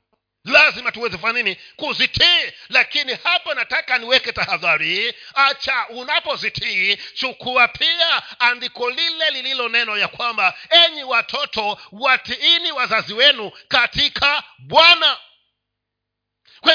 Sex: male